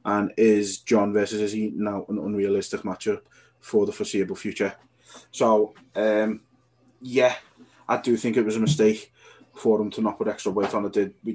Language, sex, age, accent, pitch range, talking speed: English, male, 20-39, British, 105-120 Hz, 185 wpm